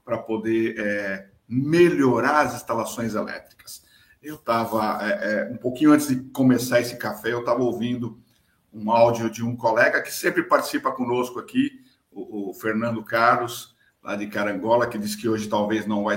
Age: 50-69